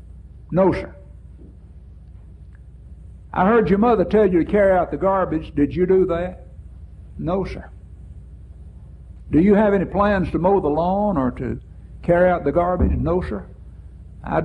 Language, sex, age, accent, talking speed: English, male, 60-79, American, 155 wpm